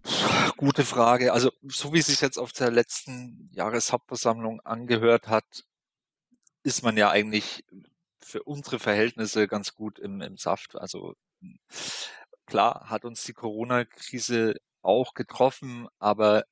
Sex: male